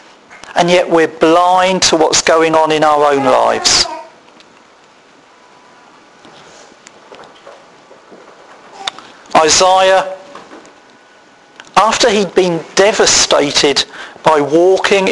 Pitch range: 160-215 Hz